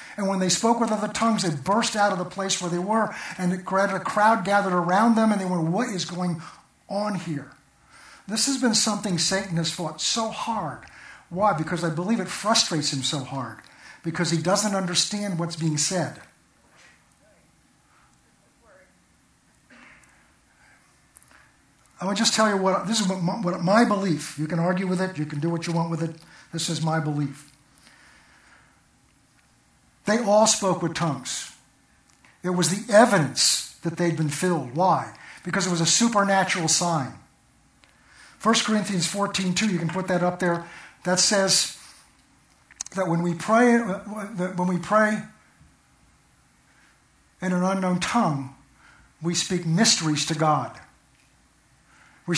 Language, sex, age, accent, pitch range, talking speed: English, male, 50-69, American, 165-205 Hz, 150 wpm